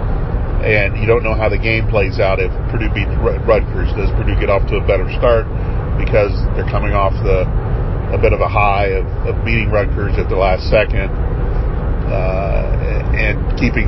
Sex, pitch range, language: male, 105-120 Hz, English